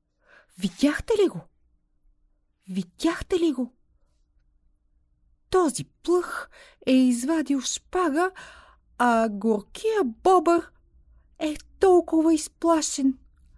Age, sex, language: 30-49, female, Bulgarian